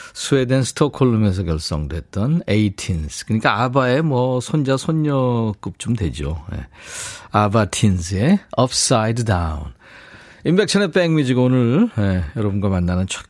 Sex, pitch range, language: male, 105-160 Hz, Korean